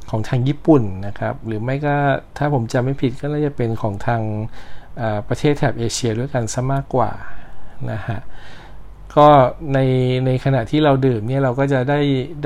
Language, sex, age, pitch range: Thai, male, 60-79, 110-135 Hz